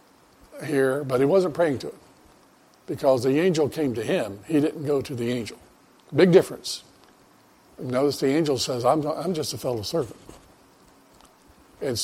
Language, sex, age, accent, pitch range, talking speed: English, male, 60-79, American, 130-160 Hz, 160 wpm